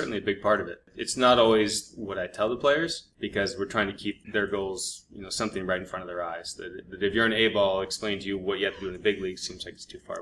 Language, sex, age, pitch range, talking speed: English, male, 20-39, 95-110 Hz, 310 wpm